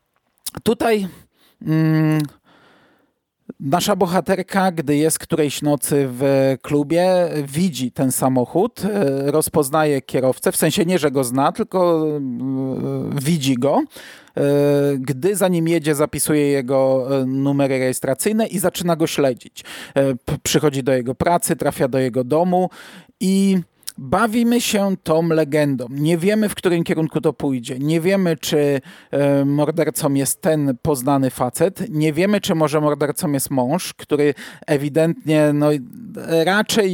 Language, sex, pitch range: Polish, male, 140-175 Hz